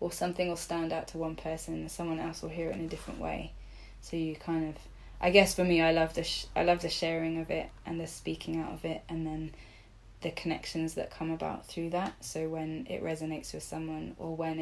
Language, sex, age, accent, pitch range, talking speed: English, female, 10-29, British, 110-165 Hz, 240 wpm